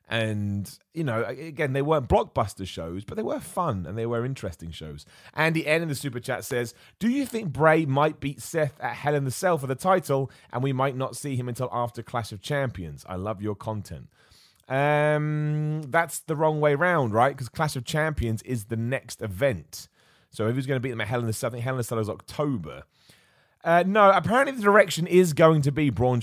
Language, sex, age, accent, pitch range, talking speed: English, male, 30-49, British, 105-140 Hz, 225 wpm